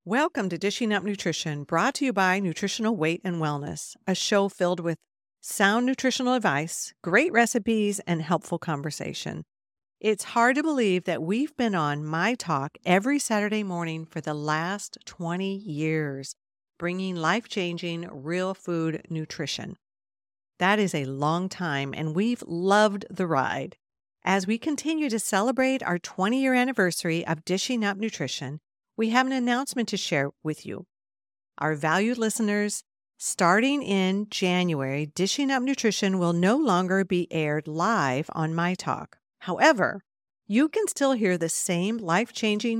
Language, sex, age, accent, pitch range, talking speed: English, female, 50-69, American, 160-225 Hz, 145 wpm